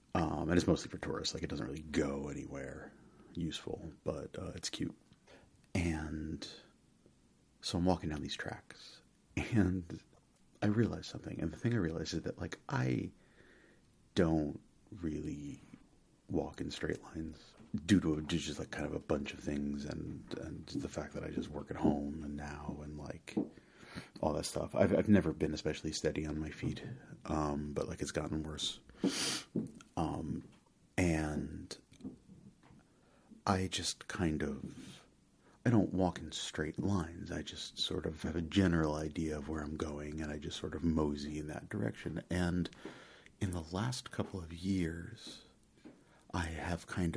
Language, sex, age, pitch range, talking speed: English, male, 40-59, 75-90 Hz, 165 wpm